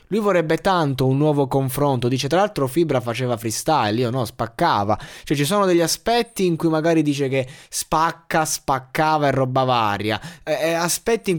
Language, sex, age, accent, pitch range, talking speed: Italian, male, 20-39, native, 125-160 Hz, 180 wpm